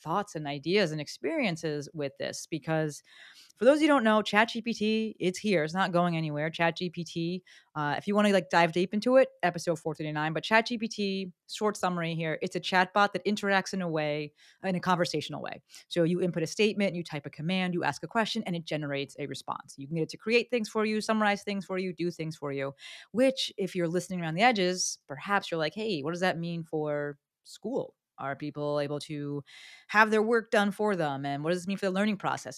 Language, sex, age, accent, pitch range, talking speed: English, female, 30-49, American, 155-200 Hz, 225 wpm